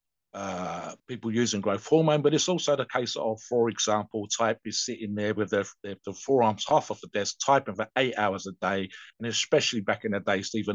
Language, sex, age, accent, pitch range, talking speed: English, male, 50-69, British, 105-140 Hz, 220 wpm